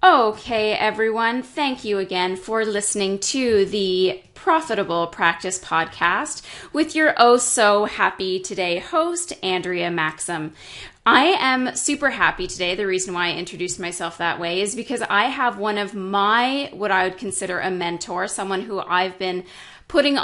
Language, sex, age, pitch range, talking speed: English, female, 20-39, 185-230 Hz, 145 wpm